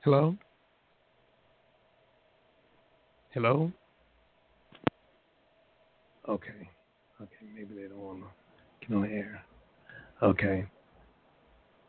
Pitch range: 110-130 Hz